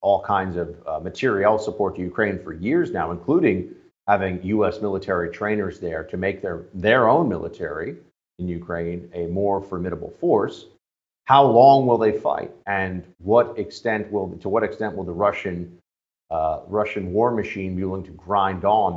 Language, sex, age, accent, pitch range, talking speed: English, male, 50-69, American, 85-105 Hz, 170 wpm